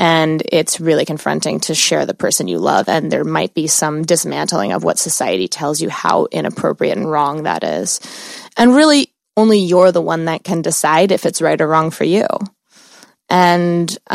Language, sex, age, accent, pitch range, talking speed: English, female, 20-39, American, 165-185 Hz, 185 wpm